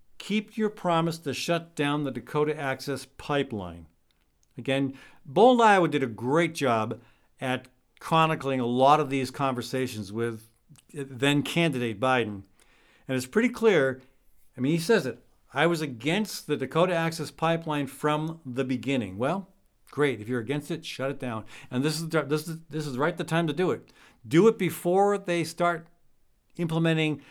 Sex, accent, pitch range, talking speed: male, American, 130-170 Hz, 165 wpm